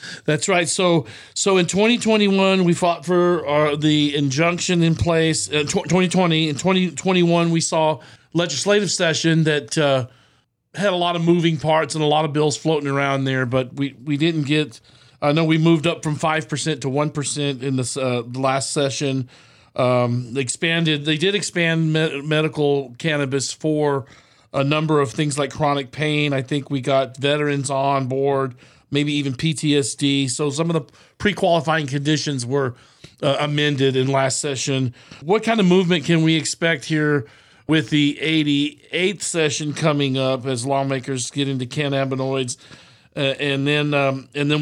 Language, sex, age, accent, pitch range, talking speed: English, male, 40-59, American, 135-160 Hz, 165 wpm